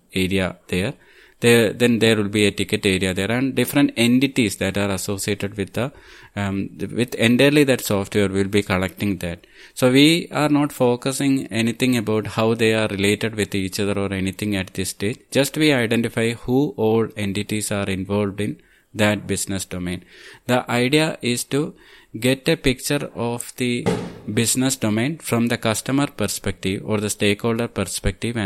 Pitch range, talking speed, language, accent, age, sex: 100-125 Hz, 165 wpm, English, Indian, 20-39, male